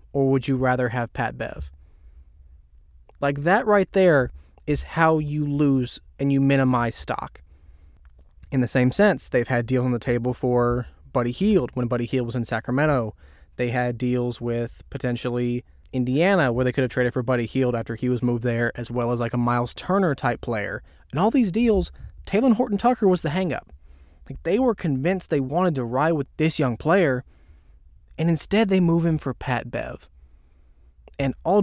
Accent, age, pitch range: American, 20-39, 110-150 Hz